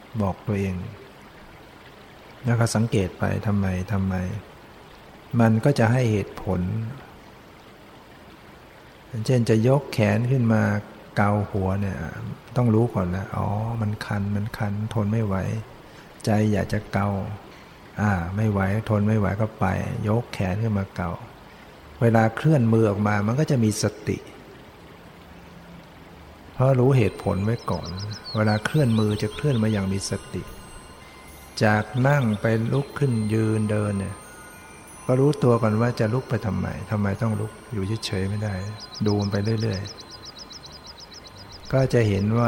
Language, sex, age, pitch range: Thai, male, 60-79, 100-115 Hz